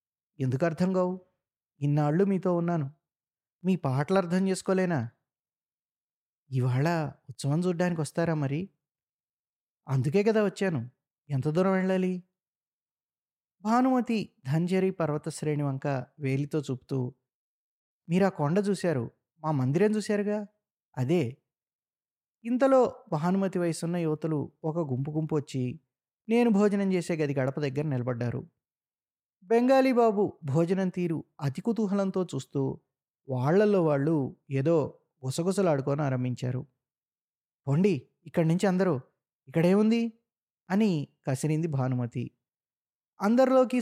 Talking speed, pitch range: 95 wpm, 135-190 Hz